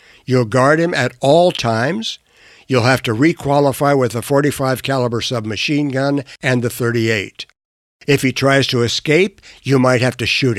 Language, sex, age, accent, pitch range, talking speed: English, male, 60-79, American, 120-150 Hz, 175 wpm